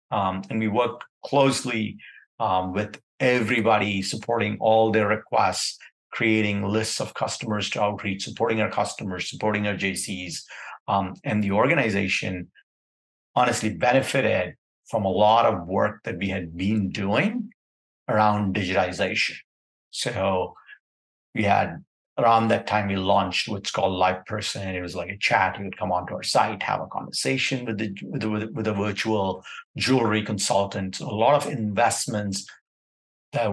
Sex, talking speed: male, 150 wpm